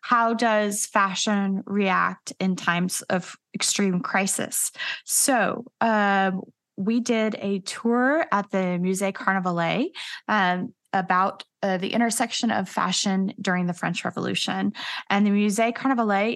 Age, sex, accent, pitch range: 20-39, female, American, 195-240 Hz